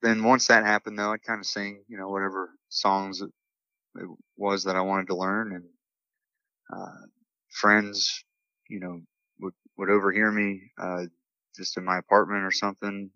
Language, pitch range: English, 95-105 Hz